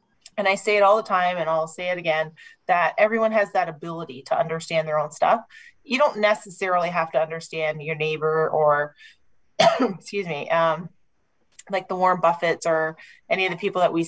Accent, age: American, 30-49